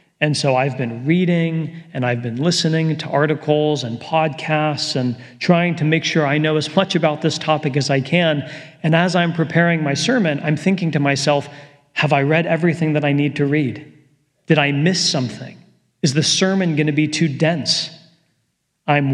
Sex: male